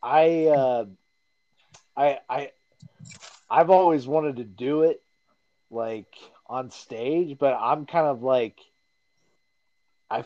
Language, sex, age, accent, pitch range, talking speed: English, male, 30-49, American, 110-135 Hz, 115 wpm